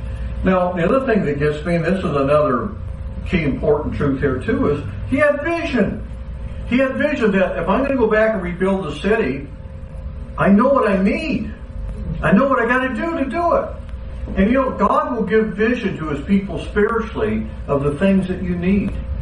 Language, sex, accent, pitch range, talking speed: English, male, American, 135-210 Hz, 205 wpm